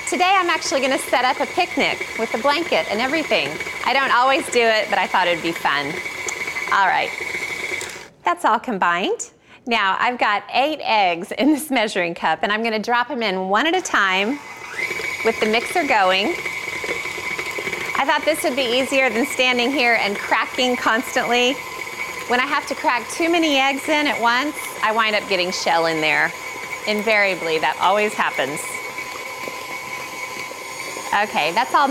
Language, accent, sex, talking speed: English, American, female, 165 wpm